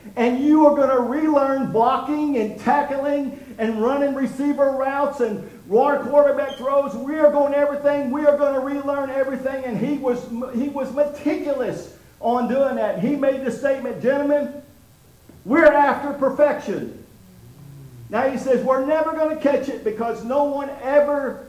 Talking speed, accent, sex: 160 wpm, American, male